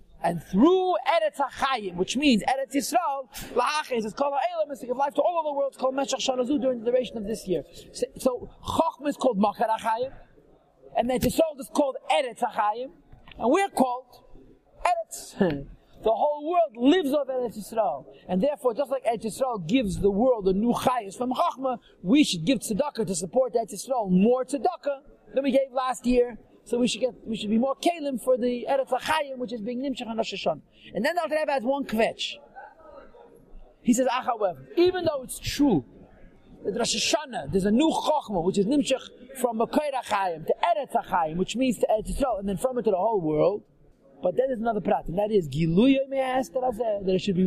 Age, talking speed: 40-59, 200 wpm